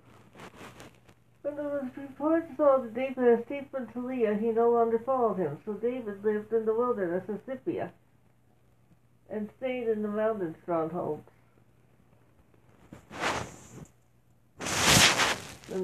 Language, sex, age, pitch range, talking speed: English, female, 60-79, 195-235 Hz, 115 wpm